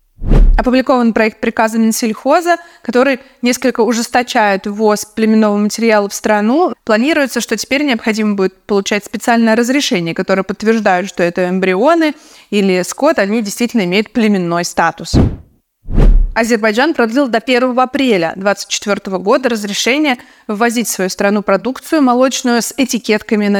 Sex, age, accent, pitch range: female, 20-39, native, 205-250 Hz